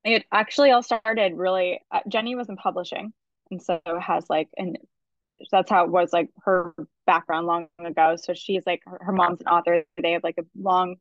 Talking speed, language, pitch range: 200 wpm, English, 175-225 Hz